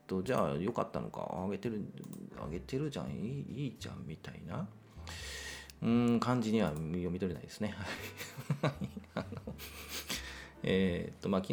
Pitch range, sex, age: 80-110 Hz, male, 40-59